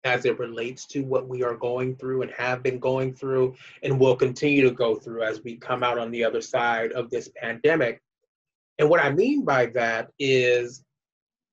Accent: American